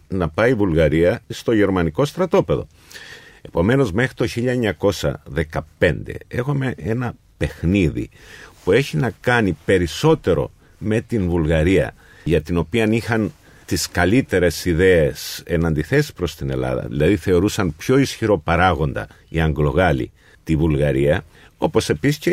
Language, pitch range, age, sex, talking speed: Greek, 80-135 Hz, 50-69, male, 125 wpm